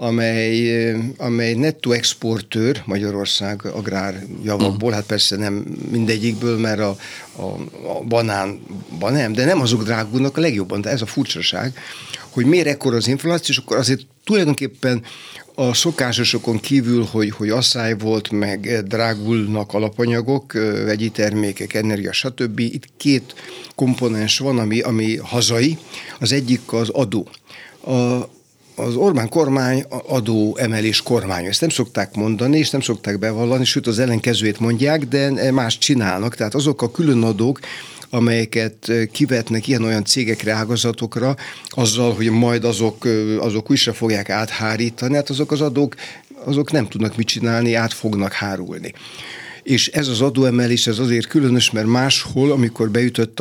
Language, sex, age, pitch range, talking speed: Hungarian, male, 60-79, 110-130 Hz, 140 wpm